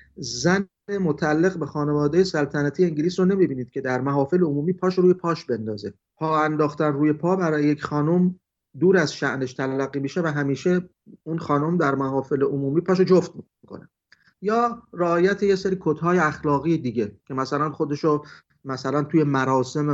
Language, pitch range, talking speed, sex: Persian, 135-175 Hz, 155 wpm, male